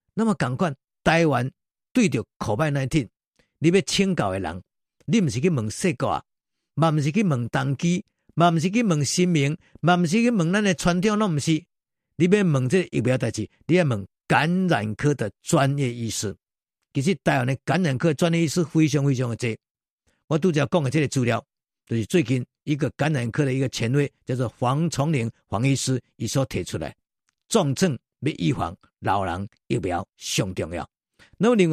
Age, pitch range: 50-69, 130-180 Hz